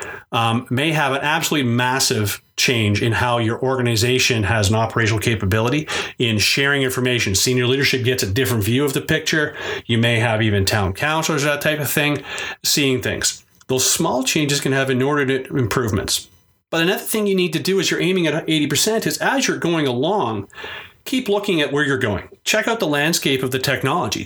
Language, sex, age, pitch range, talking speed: English, male, 40-59, 120-160 Hz, 190 wpm